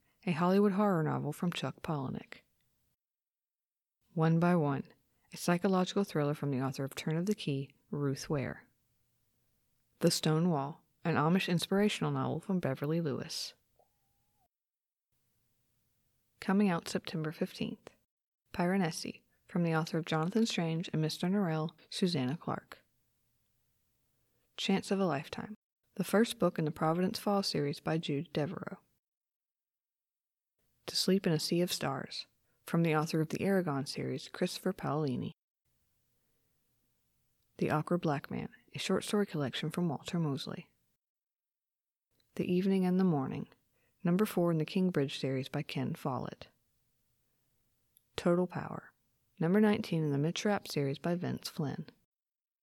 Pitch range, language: 140-185 Hz, English